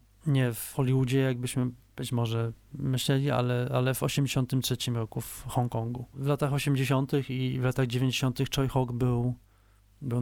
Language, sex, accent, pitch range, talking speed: Polish, male, native, 120-135 Hz, 145 wpm